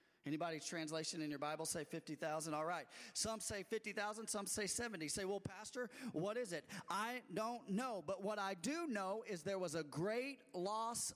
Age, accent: 40-59, American